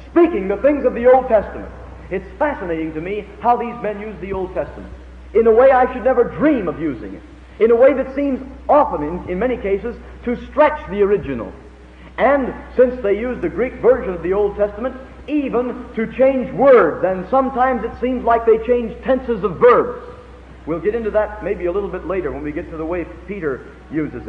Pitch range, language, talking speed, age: 170-255 Hz, English, 210 wpm, 50-69